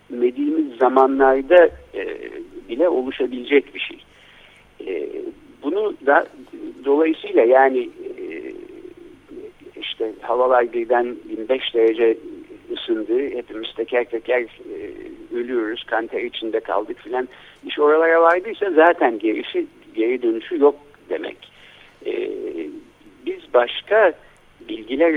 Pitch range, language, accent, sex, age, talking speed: 290-375 Hz, Turkish, native, male, 50-69, 100 wpm